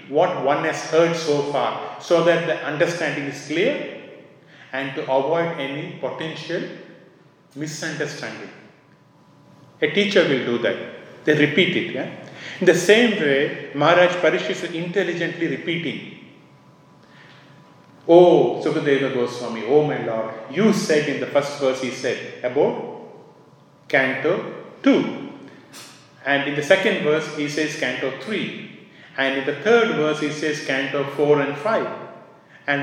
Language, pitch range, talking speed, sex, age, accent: English, 140-175 Hz, 140 wpm, male, 40-59, Indian